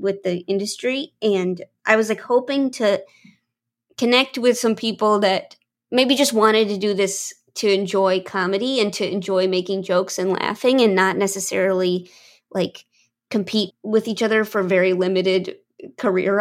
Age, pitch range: 20-39, 185-220 Hz